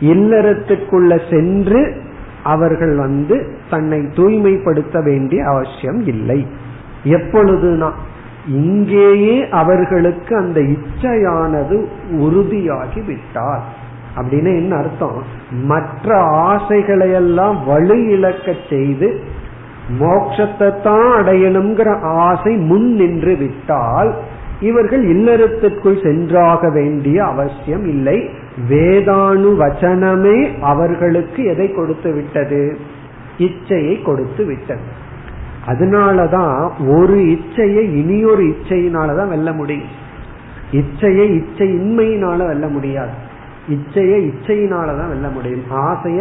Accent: native